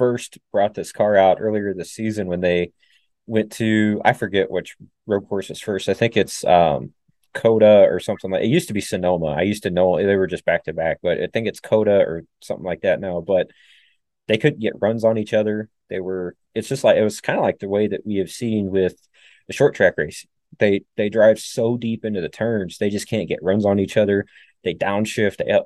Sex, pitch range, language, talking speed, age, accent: male, 95-110 Hz, English, 235 wpm, 20-39, American